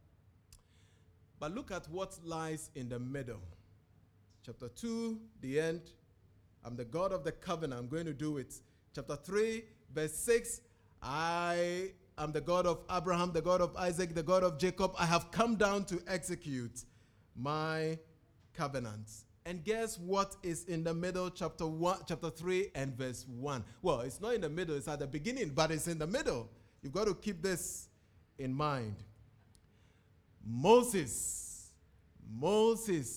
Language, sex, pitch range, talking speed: English, male, 115-195 Hz, 155 wpm